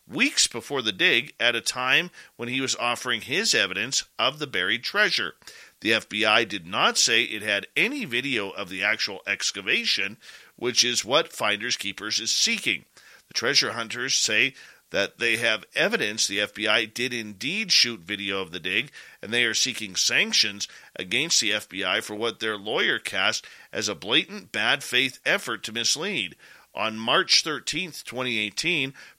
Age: 40-59